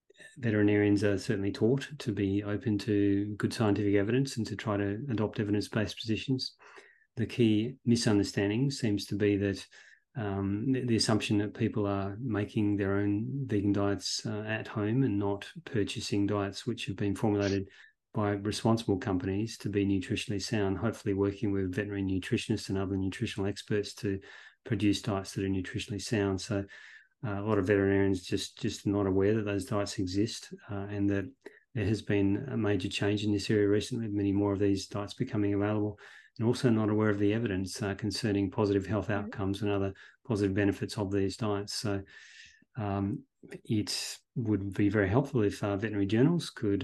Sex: male